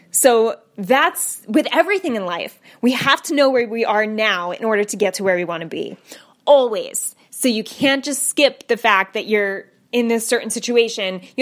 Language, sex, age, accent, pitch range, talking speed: English, female, 10-29, American, 215-285 Hz, 205 wpm